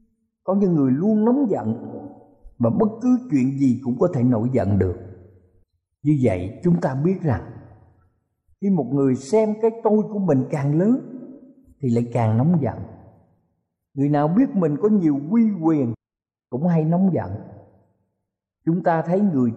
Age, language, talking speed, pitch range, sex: 50-69, Vietnamese, 165 wpm, 115-180 Hz, male